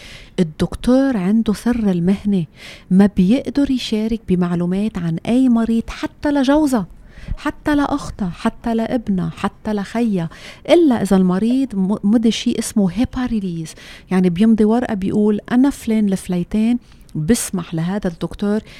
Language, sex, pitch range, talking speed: English, female, 195-250 Hz, 115 wpm